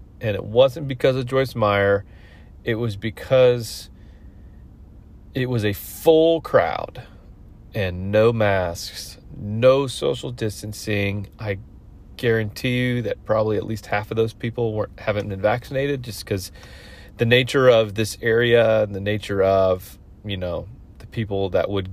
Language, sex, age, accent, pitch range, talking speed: English, male, 30-49, American, 100-130 Hz, 145 wpm